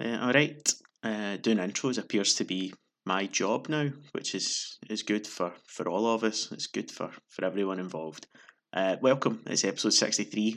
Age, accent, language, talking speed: 20-39, British, English, 175 wpm